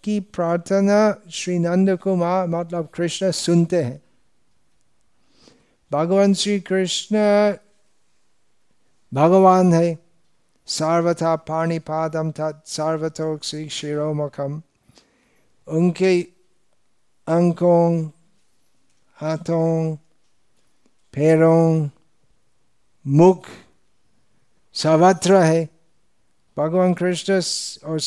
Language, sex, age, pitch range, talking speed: Hindi, male, 60-79, 155-185 Hz, 60 wpm